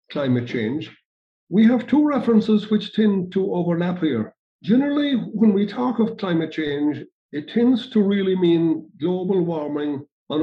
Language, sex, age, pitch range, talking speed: English, male, 60-79, 165-215 Hz, 150 wpm